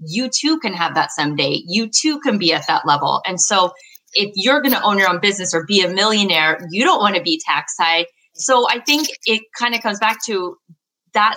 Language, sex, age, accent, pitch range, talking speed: English, female, 20-39, American, 175-245 Hz, 230 wpm